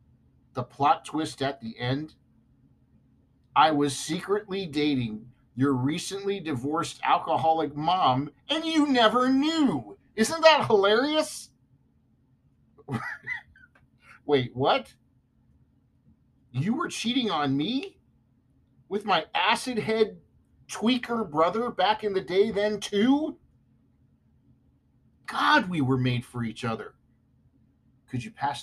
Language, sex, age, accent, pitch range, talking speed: English, male, 50-69, American, 125-210 Hz, 105 wpm